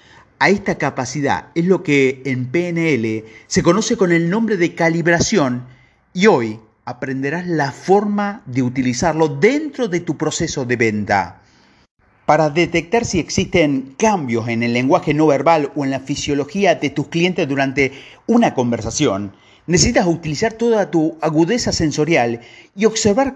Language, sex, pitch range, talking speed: Spanish, male, 135-195 Hz, 145 wpm